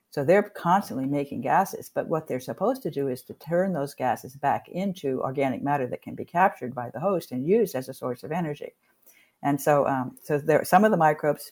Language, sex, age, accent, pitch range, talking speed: English, female, 60-79, American, 135-170 Hz, 225 wpm